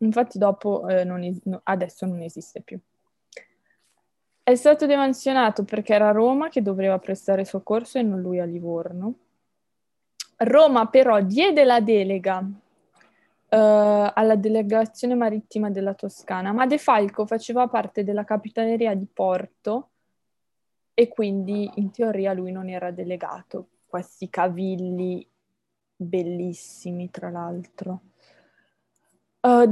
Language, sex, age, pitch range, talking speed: Italian, female, 20-39, 185-240 Hz, 110 wpm